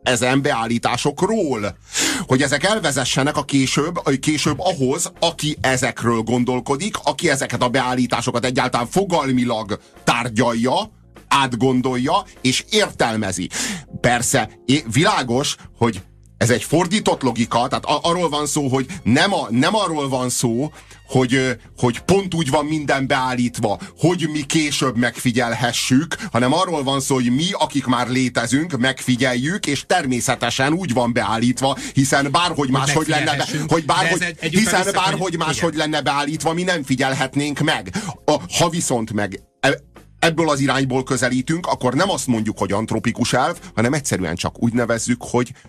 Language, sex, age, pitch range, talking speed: Hungarian, male, 30-49, 120-150 Hz, 135 wpm